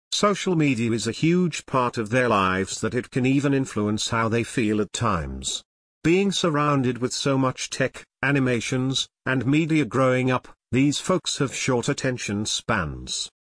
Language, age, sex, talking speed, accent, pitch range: English, 50-69, male, 160 wpm, British, 110-140 Hz